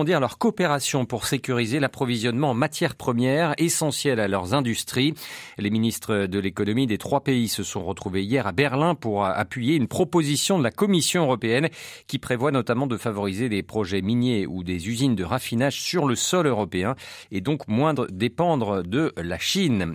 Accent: French